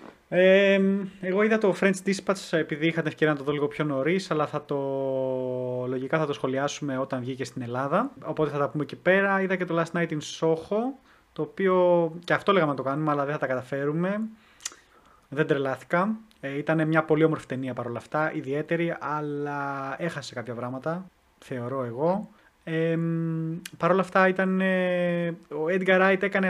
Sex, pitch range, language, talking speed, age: male, 140-180 Hz, Greek, 175 wpm, 20-39